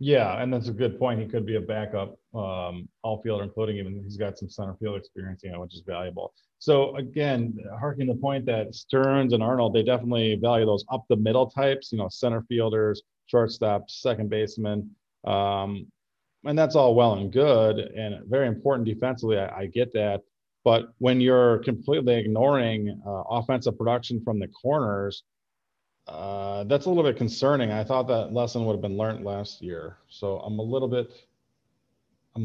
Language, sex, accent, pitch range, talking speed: English, male, American, 105-125 Hz, 175 wpm